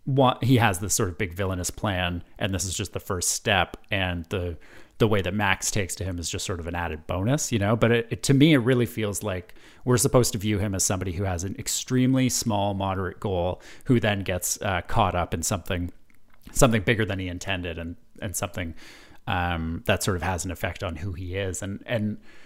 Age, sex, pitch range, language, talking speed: 30-49, male, 95-115 Hz, English, 225 wpm